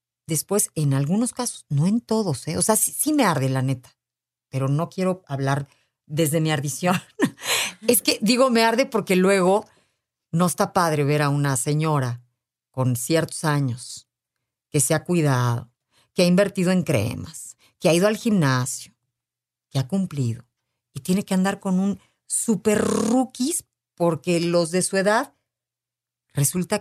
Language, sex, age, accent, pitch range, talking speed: Spanish, female, 50-69, Mexican, 135-190 Hz, 160 wpm